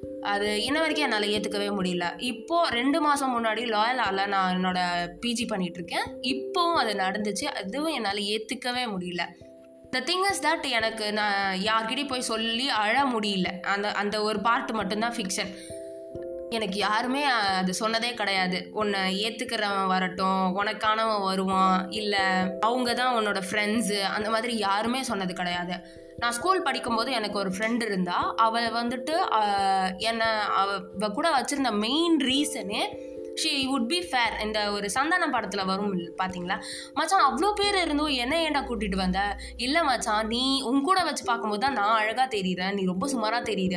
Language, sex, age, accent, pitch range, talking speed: Tamil, female, 20-39, native, 195-265 Hz, 145 wpm